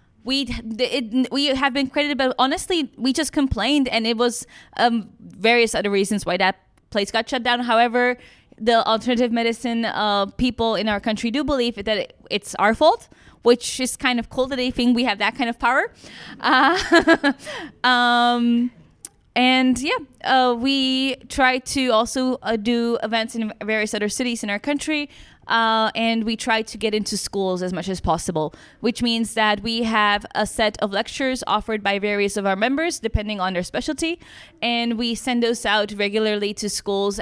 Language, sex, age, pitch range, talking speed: English, female, 20-39, 205-250 Hz, 180 wpm